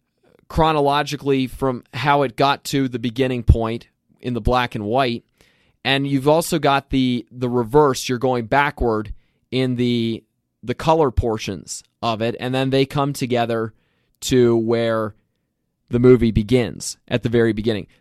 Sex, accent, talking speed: male, American, 150 wpm